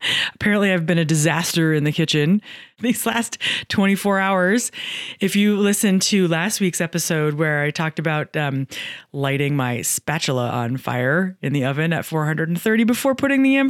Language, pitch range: English, 140-195 Hz